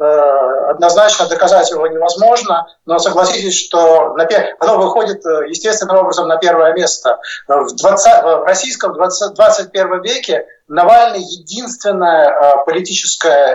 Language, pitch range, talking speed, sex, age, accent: Russian, 160-220 Hz, 95 wpm, male, 50-69, native